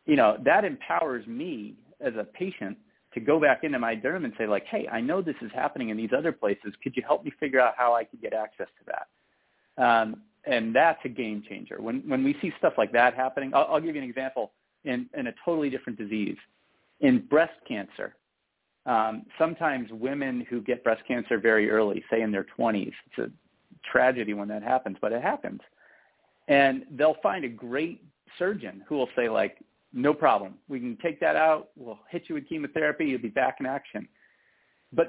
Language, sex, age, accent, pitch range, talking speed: English, male, 40-59, American, 115-160 Hz, 205 wpm